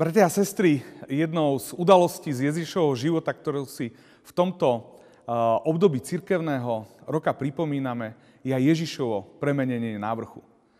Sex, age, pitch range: male, 30-49, 125-170 Hz